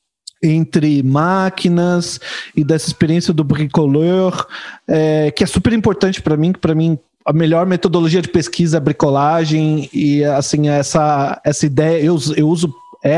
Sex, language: male, Portuguese